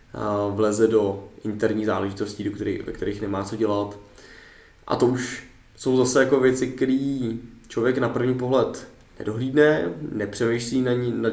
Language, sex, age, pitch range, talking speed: Czech, male, 20-39, 105-120 Hz, 145 wpm